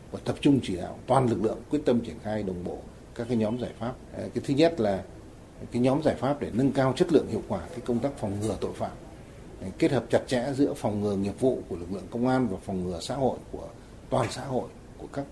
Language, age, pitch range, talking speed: Vietnamese, 60-79, 105-130 Hz, 255 wpm